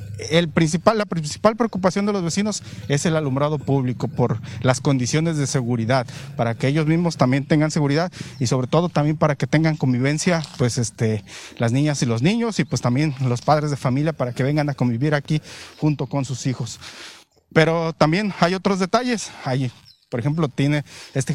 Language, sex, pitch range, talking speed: Spanish, male, 125-160 Hz, 185 wpm